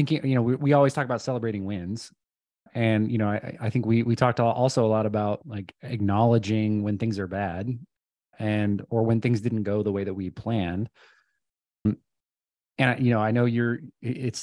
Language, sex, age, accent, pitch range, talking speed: English, male, 20-39, American, 110-125 Hz, 195 wpm